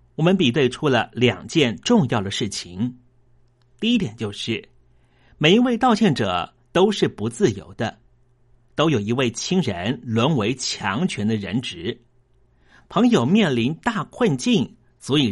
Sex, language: male, Chinese